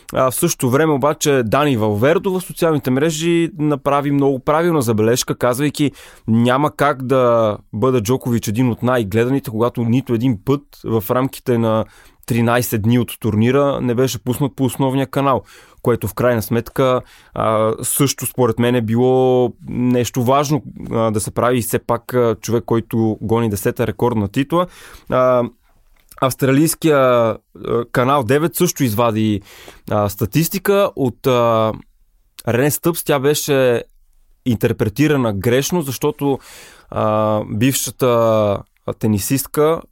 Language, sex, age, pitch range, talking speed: Bulgarian, male, 20-39, 115-140 Hz, 120 wpm